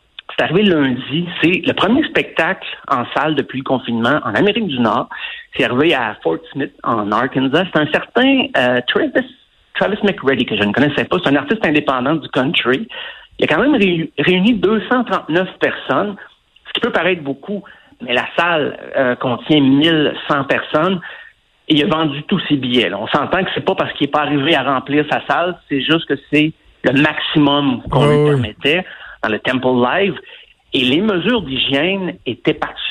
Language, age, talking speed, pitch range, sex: French, 60-79, 185 wpm, 130-185 Hz, male